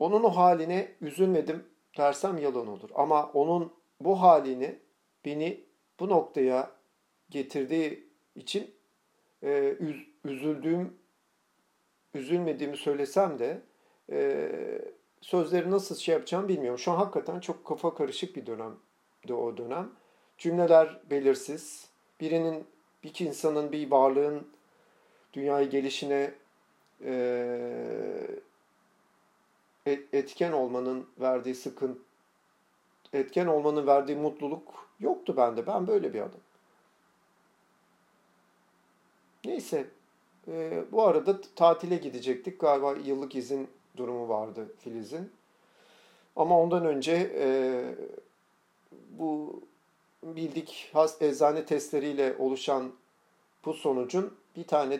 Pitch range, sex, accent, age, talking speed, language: 135-175 Hz, male, native, 50-69, 95 wpm, Turkish